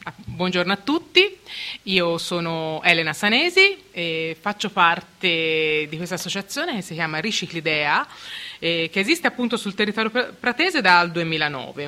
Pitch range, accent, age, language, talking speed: 170-215 Hz, native, 30-49, Italian, 130 wpm